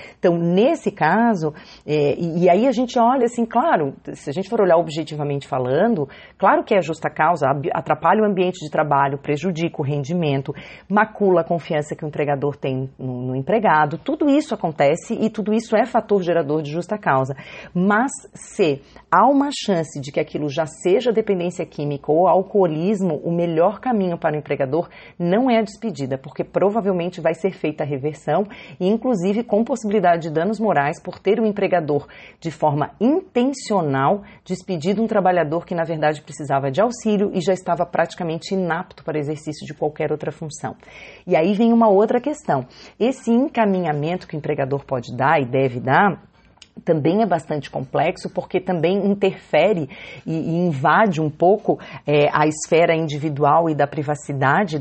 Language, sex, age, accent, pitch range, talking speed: Portuguese, female, 30-49, Brazilian, 150-205 Hz, 165 wpm